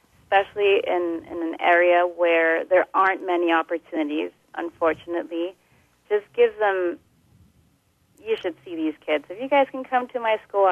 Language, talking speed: English, 150 wpm